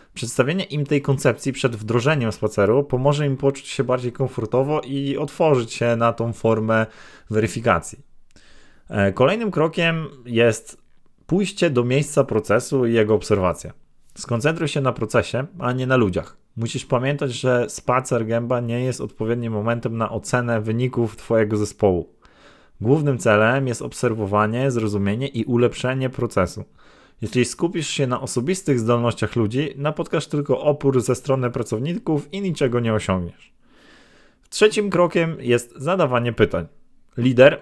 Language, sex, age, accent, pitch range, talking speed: Polish, male, 20-39, native, 115-140 Hz, 130 wpm